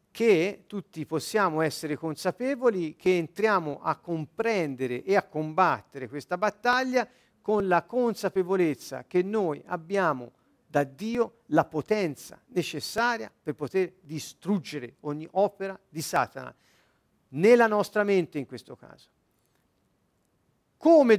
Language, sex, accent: Italian, male, native